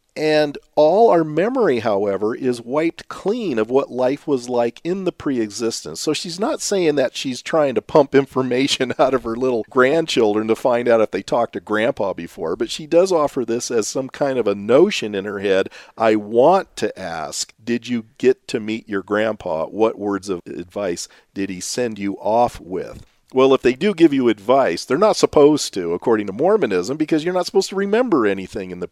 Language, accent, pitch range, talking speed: English, American, 110-155 Hz, 205 wpm